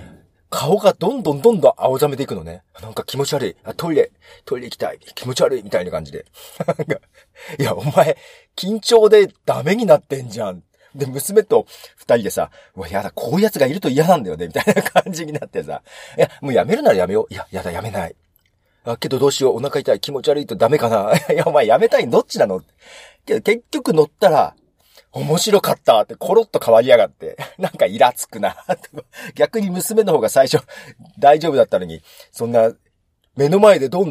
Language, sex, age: Japanese, male, 40-59